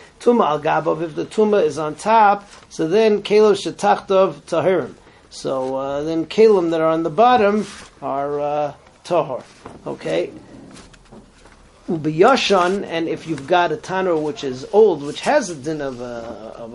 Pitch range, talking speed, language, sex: 150-195 Hz, 155 wpm, English, male